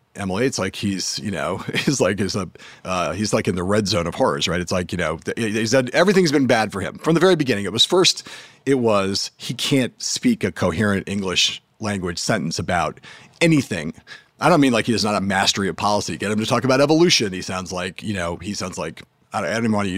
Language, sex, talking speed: English, male, 250 wpm